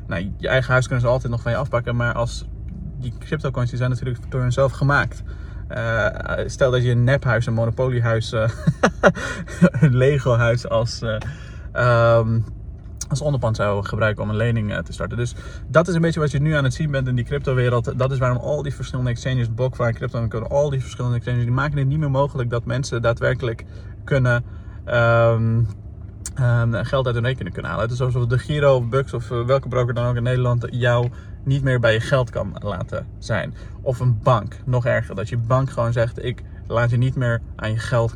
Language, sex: Dutch, male